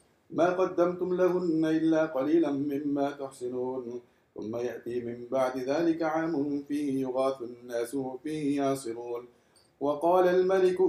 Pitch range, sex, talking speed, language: 130-160 Hz, male, 110 wpm, English